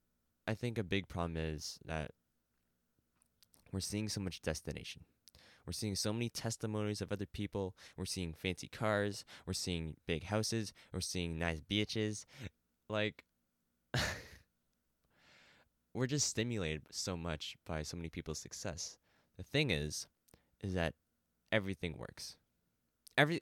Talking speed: 130 wpm